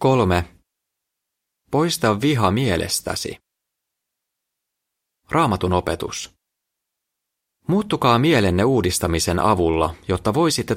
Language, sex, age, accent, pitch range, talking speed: Finnish, male, 30-49, native, 85-125 Hz, 65 wpm